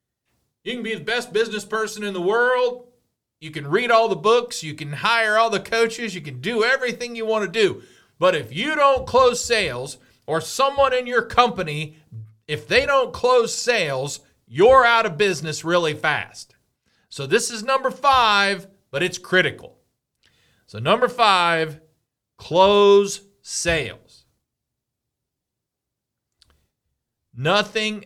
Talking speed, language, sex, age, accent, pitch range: 140 wpm, English, male, 40-59, American, 130-200 Hz